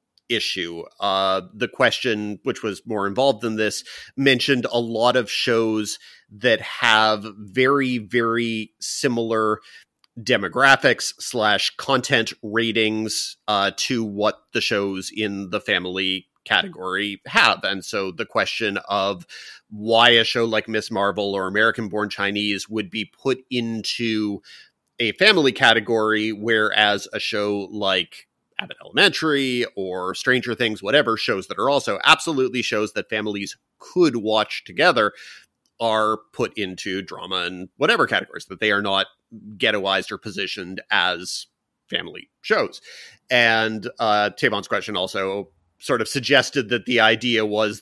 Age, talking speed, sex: 30-49, 130 wpm, male